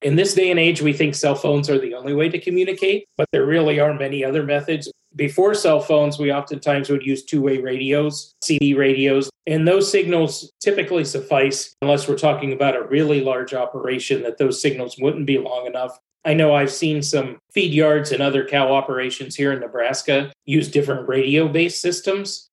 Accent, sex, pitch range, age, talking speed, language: American, male, 130-150 Hz, 30-49, 190 wpm, English